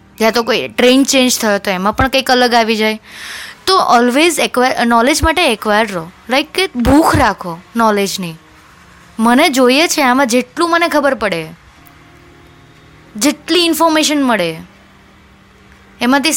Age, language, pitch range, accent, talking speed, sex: 20-39, Gujarati, 210-280 Hz, native, 130 wpm, female